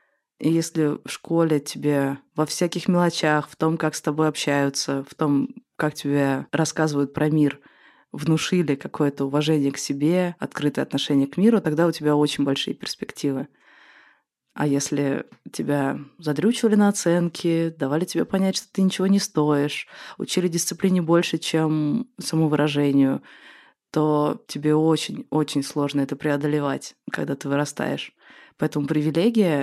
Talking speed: 140 wpm